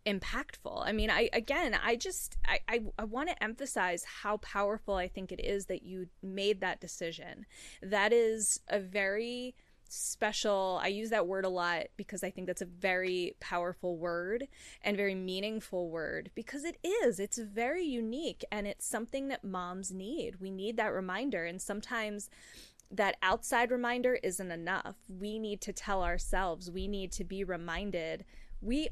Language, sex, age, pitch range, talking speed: English, female, 20-39, 185-230 Hz, 170 wpm